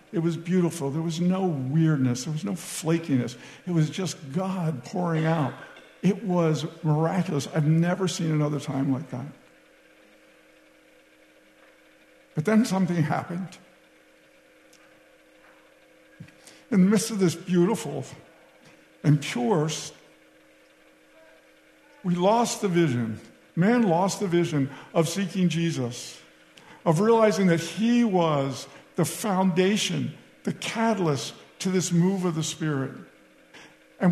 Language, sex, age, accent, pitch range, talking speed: English, male, 60-79, American, 150-190 Hz, 115 wpm